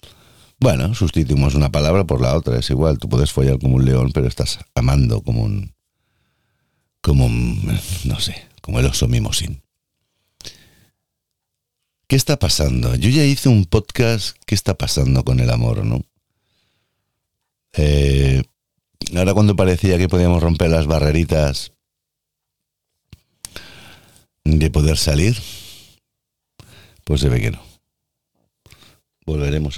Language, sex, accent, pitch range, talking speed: Spanish, male, Spanish, 70-100 Hz, 125 wpm